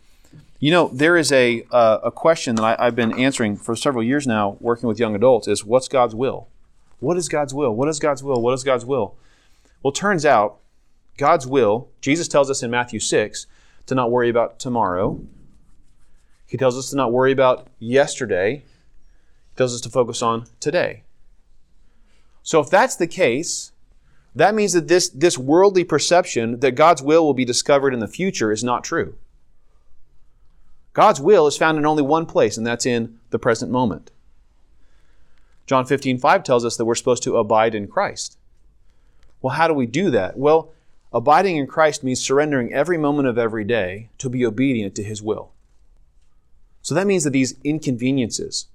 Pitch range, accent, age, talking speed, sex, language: 115-145 Hz, American, 30-49, 180 wpm, male, English